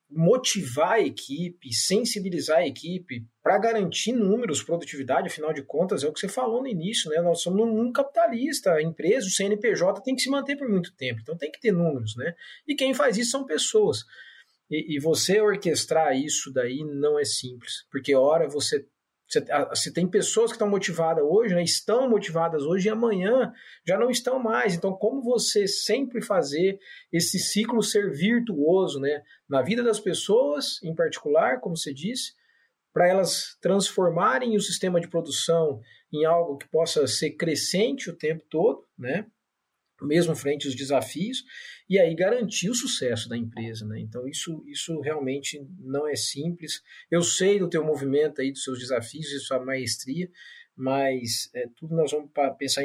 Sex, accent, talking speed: male, Brazilian, 170 wpm